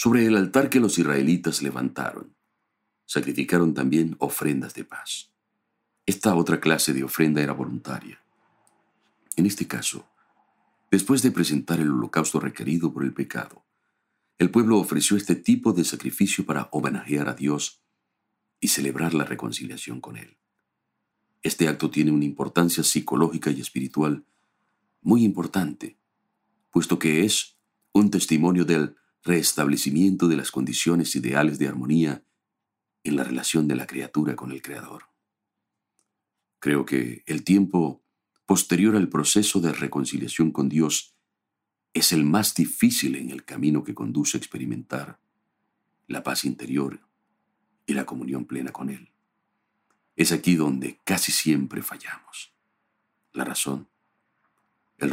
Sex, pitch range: male, 70-95 Hz